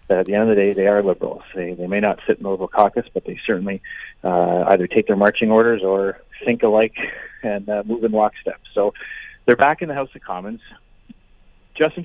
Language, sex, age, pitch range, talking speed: English, male, 30-49, 100-125 Hz, 220 wpm